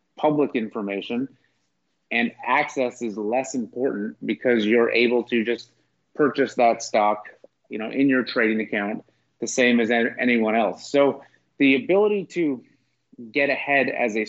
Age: 30-49